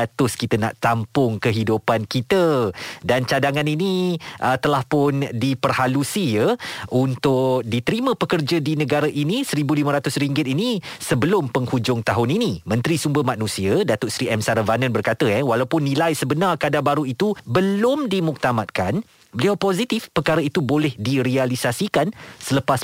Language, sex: Malay, male